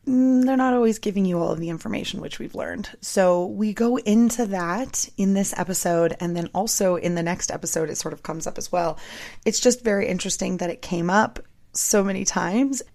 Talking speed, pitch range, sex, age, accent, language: 210 wpm, 170-215 Hz, female, 20-39, American, English